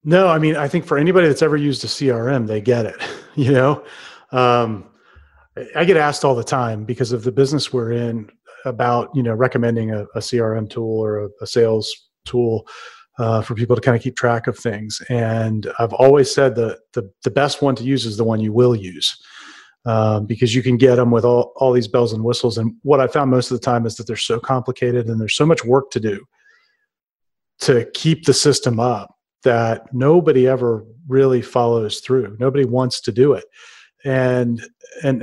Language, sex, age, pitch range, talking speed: English, male, 30-49, 120-145 Hz, 205 wpm